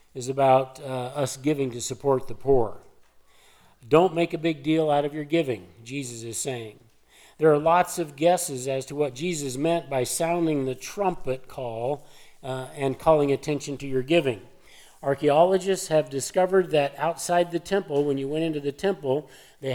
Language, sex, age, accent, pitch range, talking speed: English, male, 50-69, American, 135-170 Hz, 175 wpm